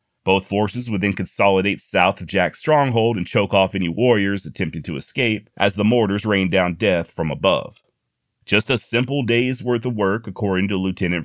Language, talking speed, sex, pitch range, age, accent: English, 185 wpm, male, 95-115 Hz, 30-49, American